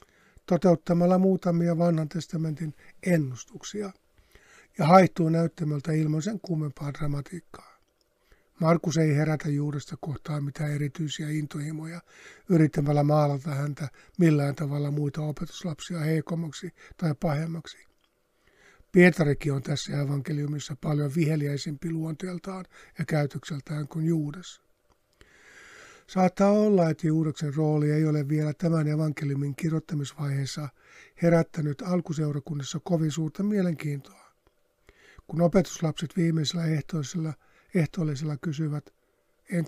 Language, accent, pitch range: Finnish, native, 150-175 Hz